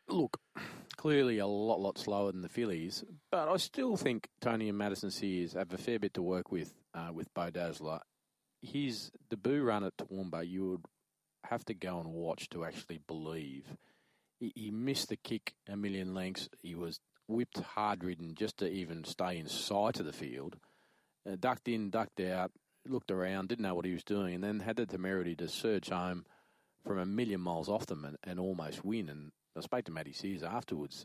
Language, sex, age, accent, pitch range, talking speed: English, male, 40-59, Australian, 85-110 Hz, 200 wpm